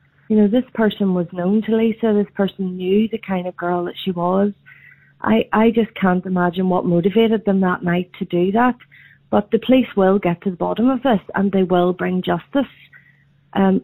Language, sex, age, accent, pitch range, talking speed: English, female, 40-59, Irish, 180-205 Hz, 205 wpm